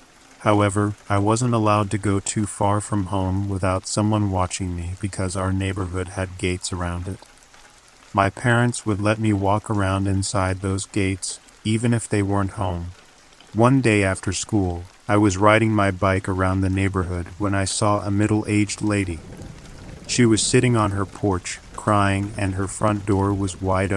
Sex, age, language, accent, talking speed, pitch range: male, 40-59, English, American, 170 wpm, 95-105 Hz